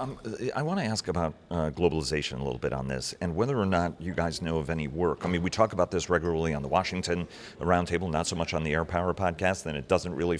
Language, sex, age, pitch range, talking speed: English, male, 40-59, 80-95 Hz, 265 wpm